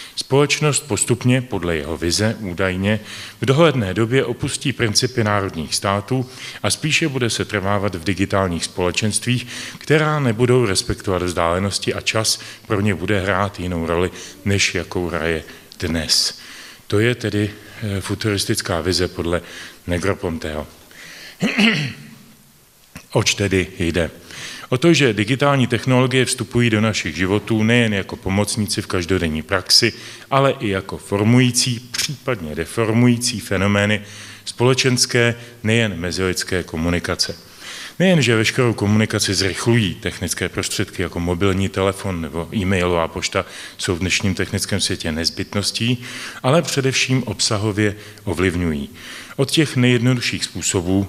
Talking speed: 115 wpm